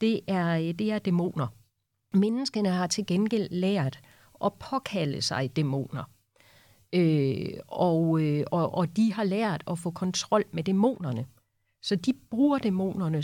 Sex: female